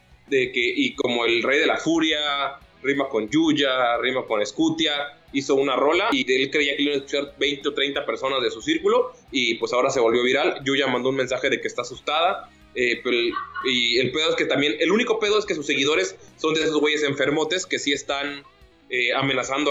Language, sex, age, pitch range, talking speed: Spanish, male, 20-39, 135-175 Hz, 220 wpm